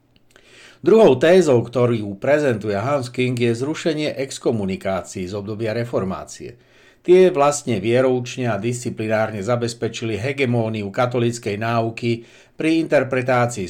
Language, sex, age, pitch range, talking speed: Slovak, male, 60-79, 115-135 Hz, 100 wpm